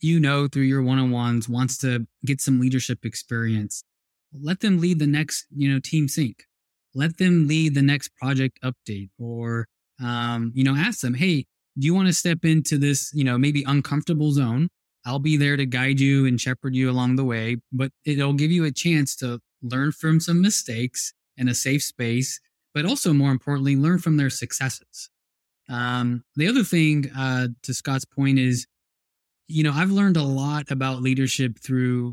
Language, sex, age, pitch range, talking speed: English, male, 20-39, 125-150 Hz, 185 wpm